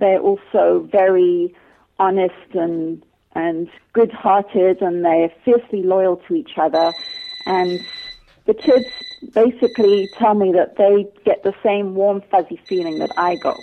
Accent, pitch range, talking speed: British, 170-205 Hz, 135 wpm